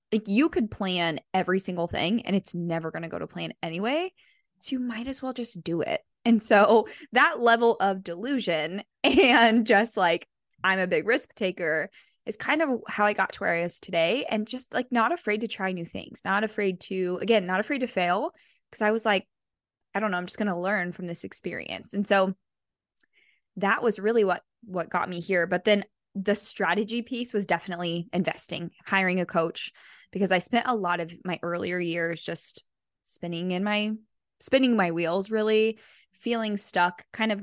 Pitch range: 175-225 Hz